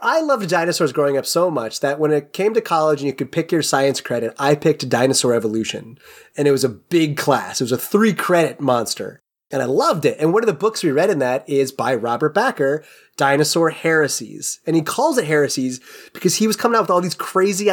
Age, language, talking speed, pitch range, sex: 30-49, English, 235 wpm, 135-180 Hz, male